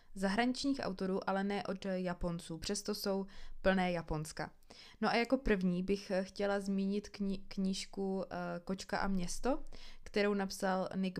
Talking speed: 130 wpm